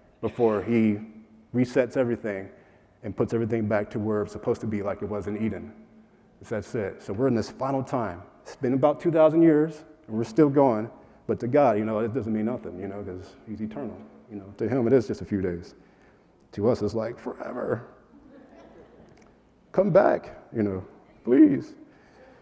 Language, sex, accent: English, male, American